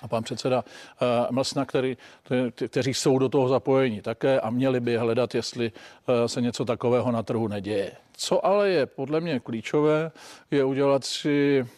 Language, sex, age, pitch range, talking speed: Czech, male, 50-69, 120-135 Hz, 155 wpm